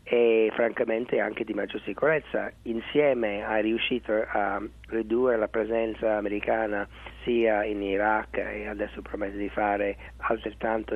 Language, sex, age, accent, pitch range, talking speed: Italian, male, 40-59, native, 110-130 Hz, 125 wpm